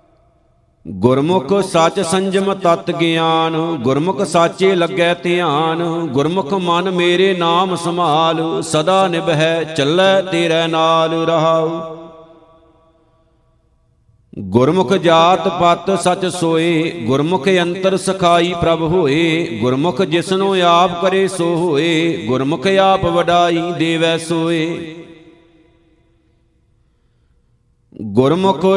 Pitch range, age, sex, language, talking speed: 160-180 Hz, 50-69, male, Punjabi, 80 wpm